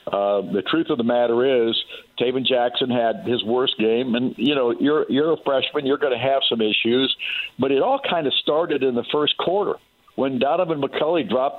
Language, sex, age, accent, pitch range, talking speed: English, male, 50-69, American, 120-140 Hz, 205 wpm